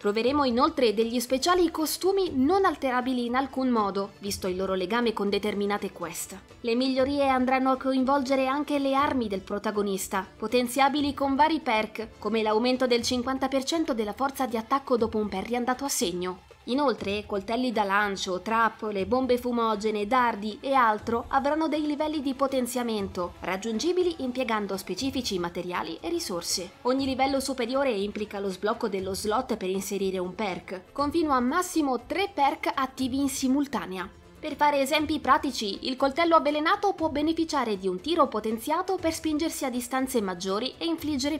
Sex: female